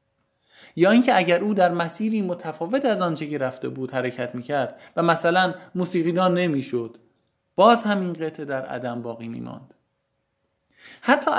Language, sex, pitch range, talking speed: Persian, male, 130-205 Hz, 135 wpm